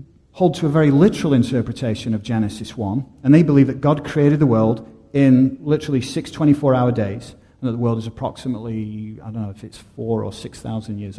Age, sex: 40-59, male